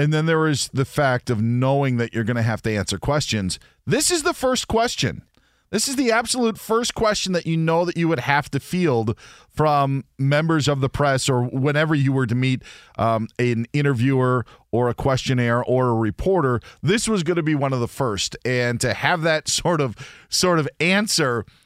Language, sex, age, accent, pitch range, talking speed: English, male, 40-59, American, 120-160 Hz, 205 wpm